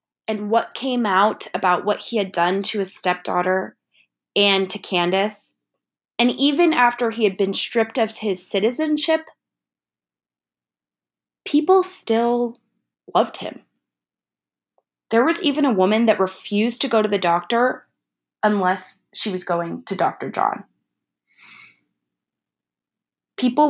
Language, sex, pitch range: English, female, 185-240 Hz